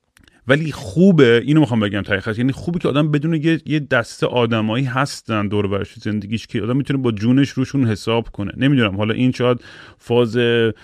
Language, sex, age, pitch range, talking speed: Persian, male, 30-49, 110-140 Hz, 175 wpm